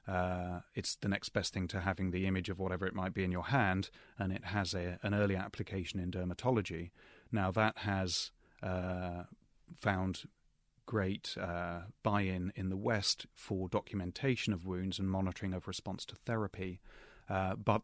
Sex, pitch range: male, 90-105 Hz